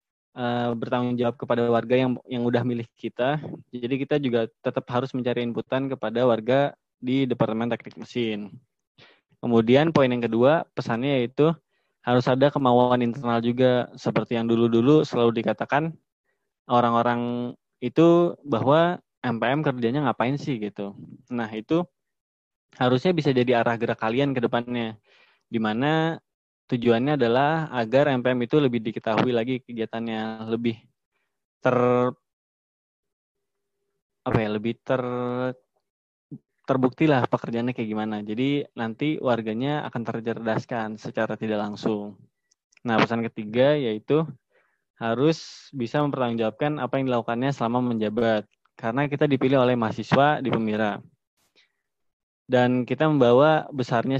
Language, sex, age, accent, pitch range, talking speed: Indonesian, male, 20-39, native, 115-135 Hz, 120 wpm